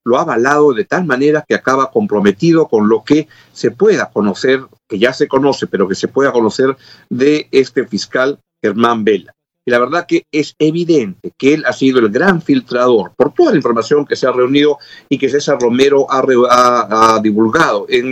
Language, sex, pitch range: Spanish, male, 125-155 Hz